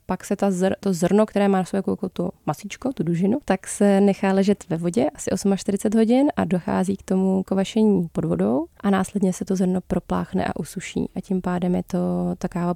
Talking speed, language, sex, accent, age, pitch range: 205 wpm, Czech, female, native, 20-39, 180-200 Hz